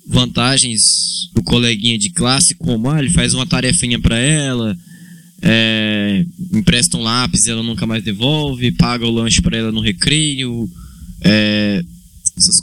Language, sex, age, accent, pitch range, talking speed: Portuguese, male, 20-39, Brazilian, 115-170 Hz, 140 wpm